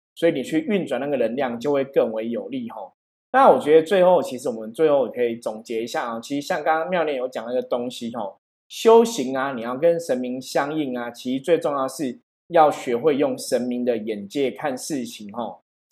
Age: 20-39